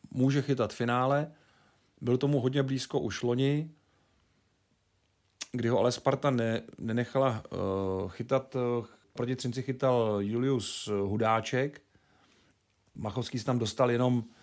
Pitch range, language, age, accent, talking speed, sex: 105-130 Hz, Czech, 40-59, native, 105 wpm, male